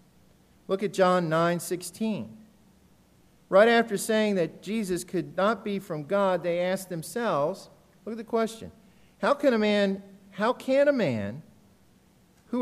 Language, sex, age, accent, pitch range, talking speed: English, male, 50-69, American, 145-195 Hz, 145 wpm